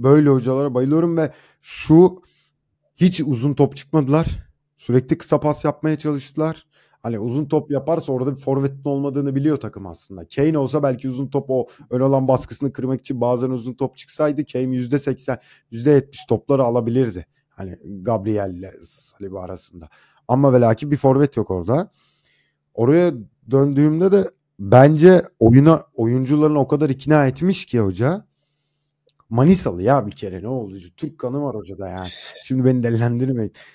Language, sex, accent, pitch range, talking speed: Turkish, male, native, 115-145 Hz, 150 wpm